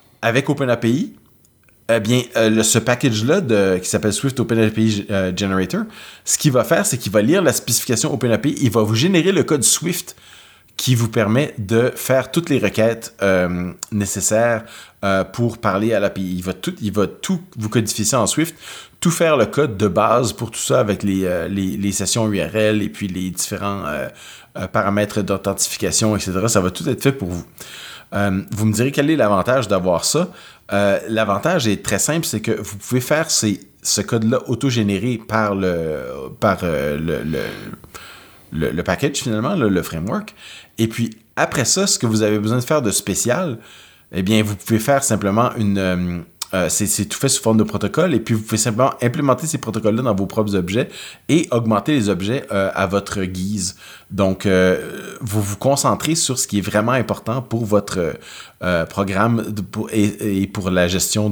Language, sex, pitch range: French, male, 100-120 Hz